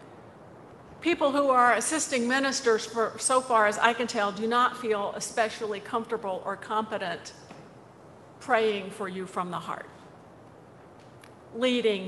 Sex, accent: female, American